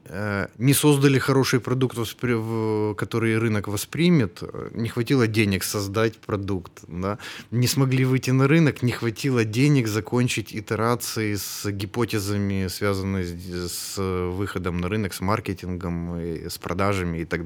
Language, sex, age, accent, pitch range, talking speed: Ukrainian, male, 20-39, native, 90-115 Hz, 120 wpm